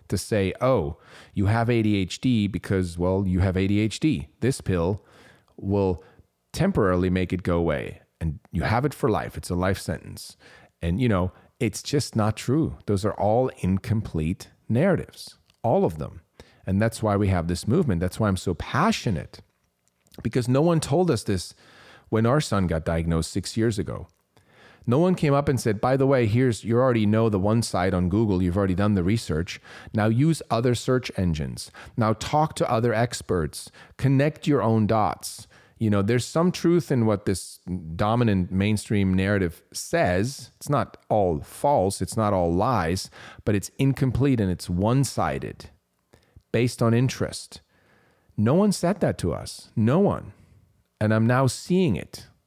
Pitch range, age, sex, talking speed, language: 95-120 Hz, 30-49, male, 170 wpm, English